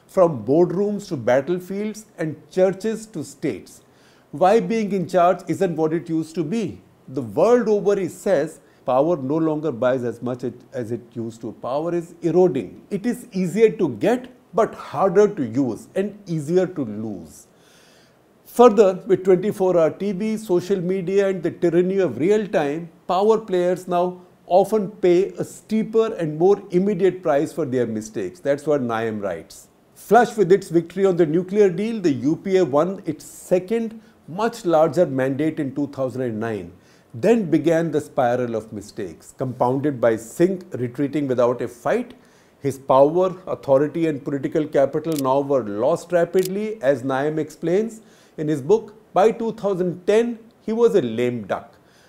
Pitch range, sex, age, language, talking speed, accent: 145-200 Hz, male, 50-69, English, 155 wpm, Indian